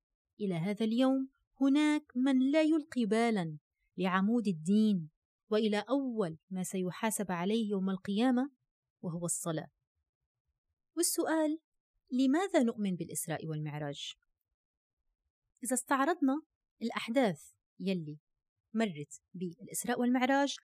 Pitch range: 180-260 Hz